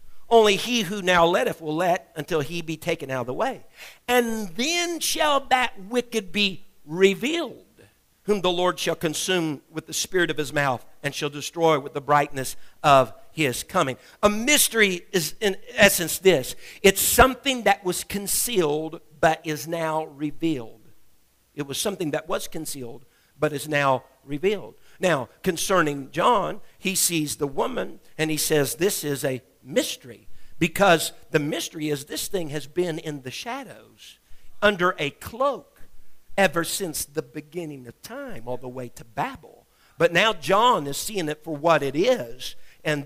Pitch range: 145-195 Hz